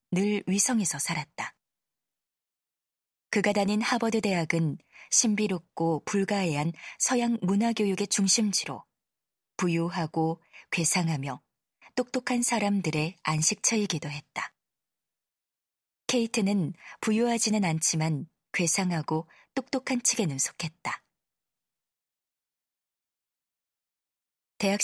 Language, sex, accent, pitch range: Korean, female, native, 170-220 Hz